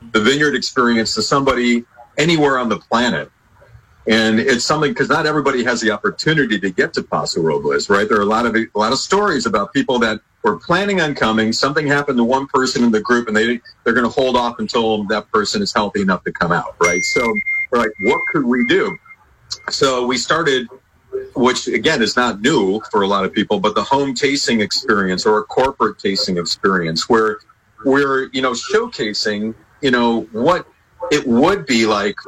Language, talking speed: English, 200 wpm